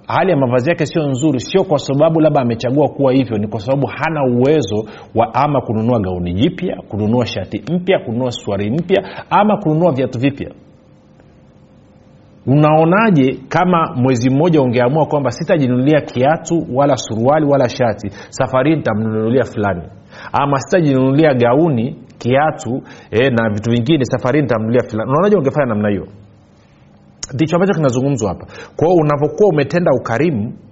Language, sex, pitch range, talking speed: Swahili, male, 110-150 Hz, 135 wpm